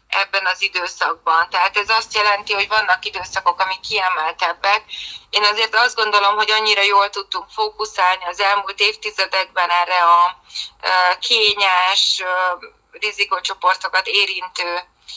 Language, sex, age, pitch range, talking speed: Hungarian, female, 20-39, 175-210 Hz, 115 wpm